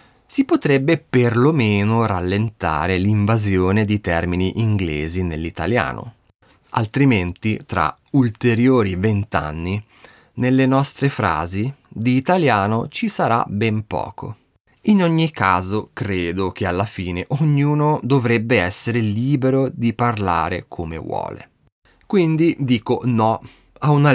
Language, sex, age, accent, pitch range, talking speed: Italian, male, 30-49, native, 95-130 Hz, 105 wpm